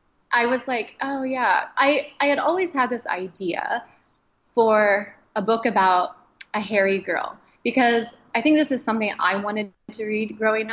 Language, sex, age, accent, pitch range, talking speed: English, female, 20-39, American, 200-250 Hz, 170 wpm